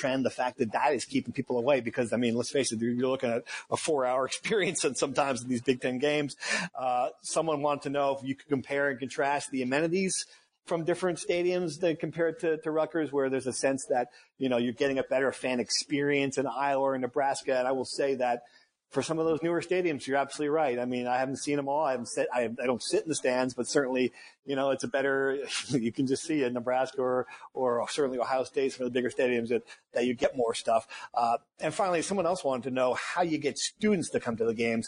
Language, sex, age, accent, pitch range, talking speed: English, male, 40-59, American, 130-160 Hz, 250 wpm